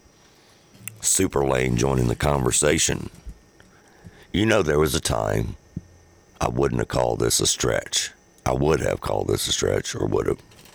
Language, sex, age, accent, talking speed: English, male, 50-69, American, 160 wpm